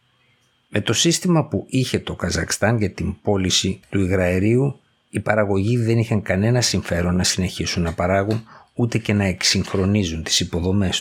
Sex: male